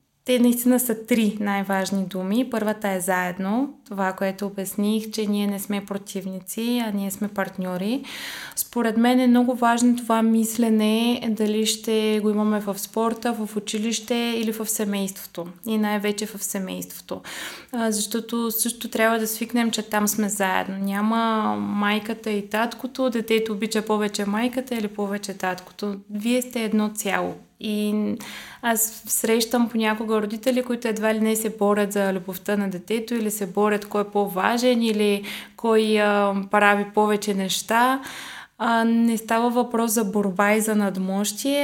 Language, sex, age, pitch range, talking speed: Bulgarian, female, 20-39, 200-230 Hz, 145 wpm